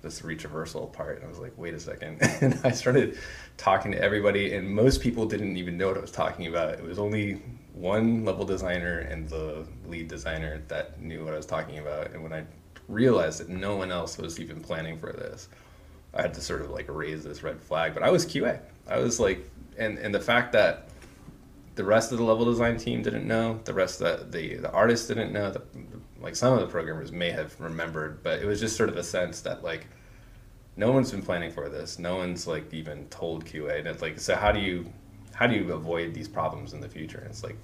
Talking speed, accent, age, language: 235 wpm, American, 20-39, English